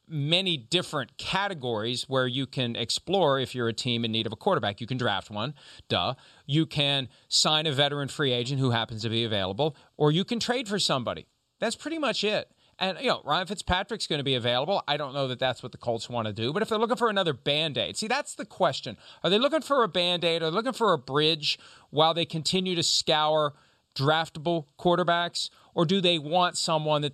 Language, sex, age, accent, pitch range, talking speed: English, male, 40-59, American, 125-180 Hz, 215 wpm